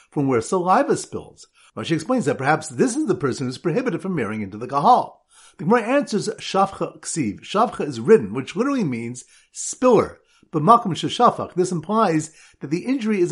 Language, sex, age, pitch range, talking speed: English, male, 50-69, 150-210 Hz, 175 wpm